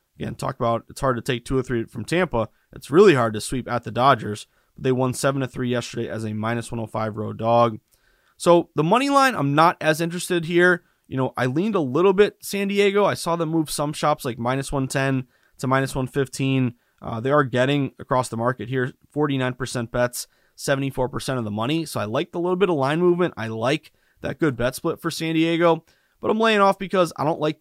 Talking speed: 220 wpm